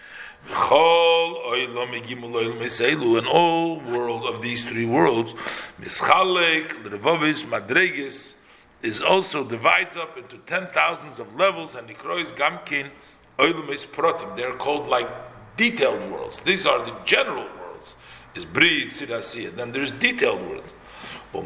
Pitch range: 120-190 Hz